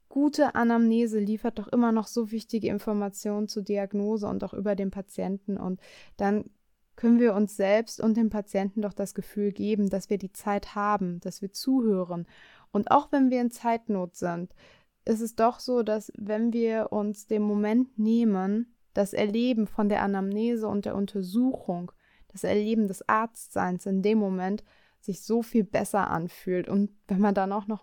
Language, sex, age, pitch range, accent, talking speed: German, female, 20-39, 200-230 Hz, German, 175 wpm